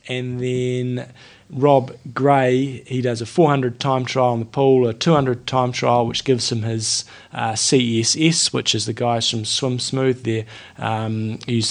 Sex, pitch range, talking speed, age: male, 115-140 Hz, 170 wpm, 20-39